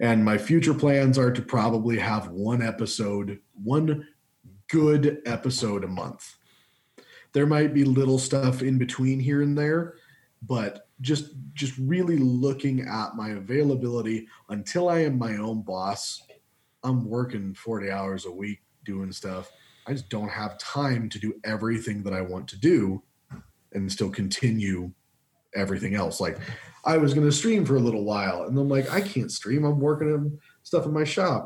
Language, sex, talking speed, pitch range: English, male, 170 wpm, 110-145 Hz